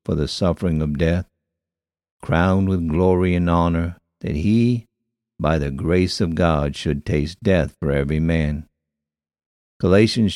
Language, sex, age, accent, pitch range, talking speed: English, male, 60-79, American, 80-100 Hz, 140 wpm